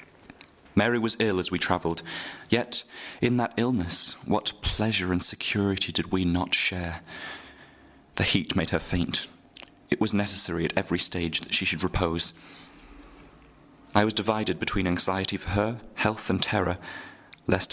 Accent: British